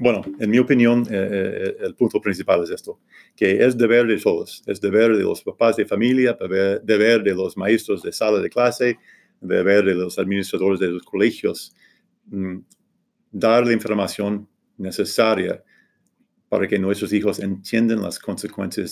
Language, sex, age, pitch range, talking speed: English, male, 40-59, 100-115 Hz, 160 wpm